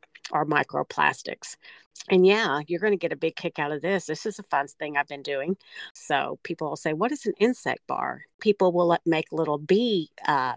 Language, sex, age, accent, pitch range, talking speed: English, female, 50-69, American, 155-190 Hz, 210 wpm